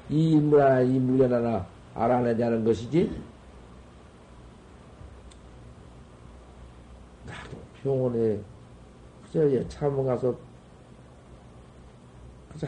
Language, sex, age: Korean, male, 50-69